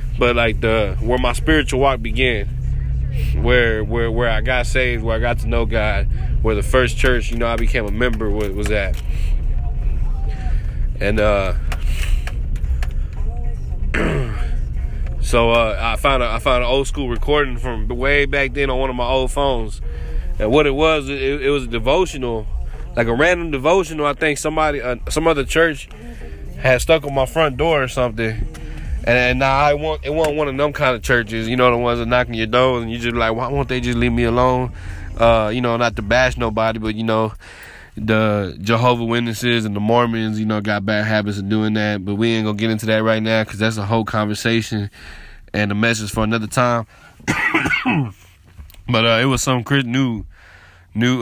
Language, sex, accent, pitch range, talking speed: English, male, American, 105-125 Hz, 195 wpm